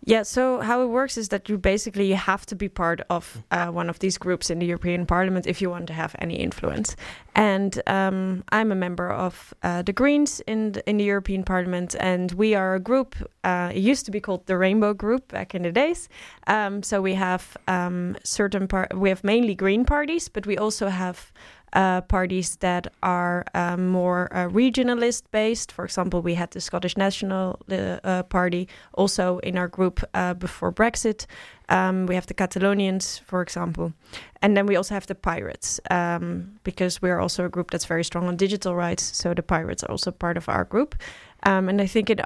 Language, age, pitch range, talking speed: English, 10-29, 180-210 Hz, 205 wpm